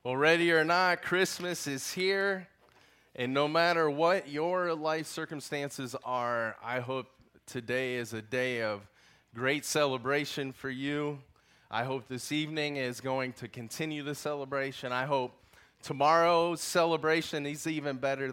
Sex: male